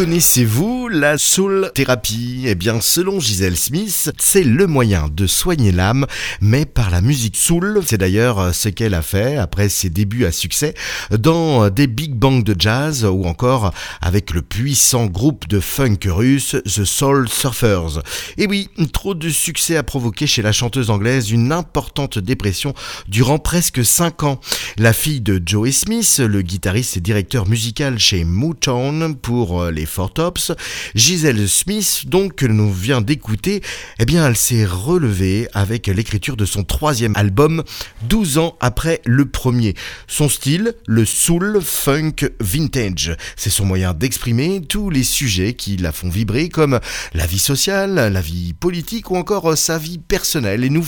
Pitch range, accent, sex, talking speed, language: 105-155 Hz, French, male, 160 wpm, French